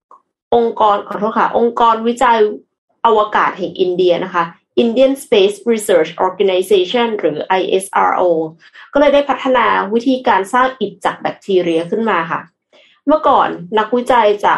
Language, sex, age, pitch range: Thai, female, 20-39, 185-245 Hz